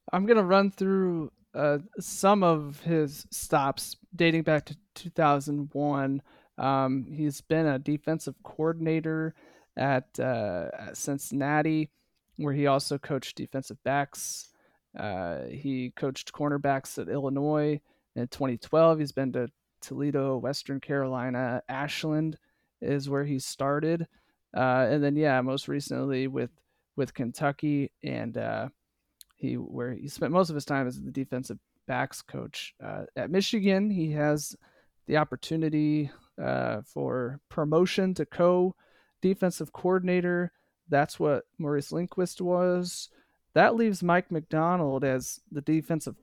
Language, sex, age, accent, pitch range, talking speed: English, male, 30-49, American, 135-170 Hz, 125 wpm